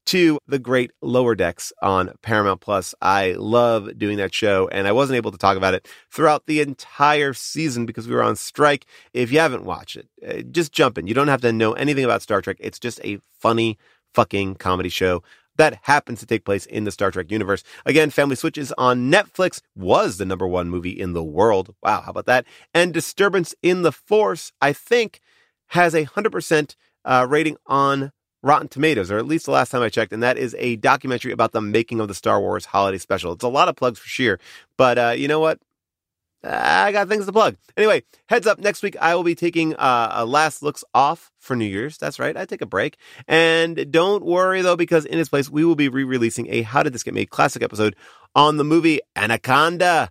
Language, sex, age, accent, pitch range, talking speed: English, male, 30-49, American, 115-160 Hz, 220 wpm